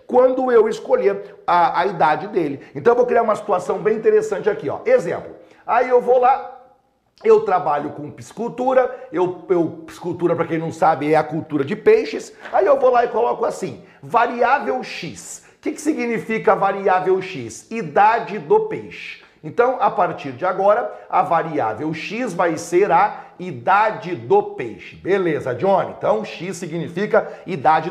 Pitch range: 170-255 Hz